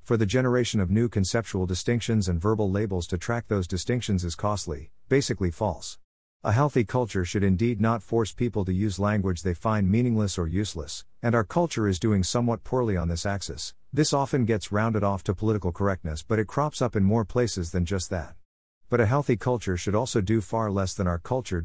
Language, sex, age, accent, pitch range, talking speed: English, male, 50-69, American, 90-115 Hz, 205 wpm